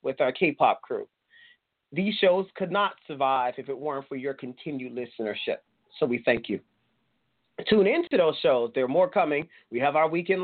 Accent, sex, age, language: American, male, 30-49, English